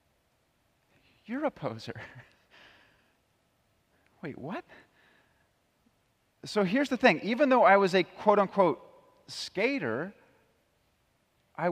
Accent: American